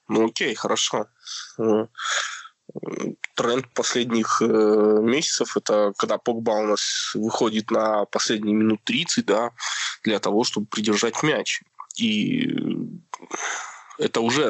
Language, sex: Russian, male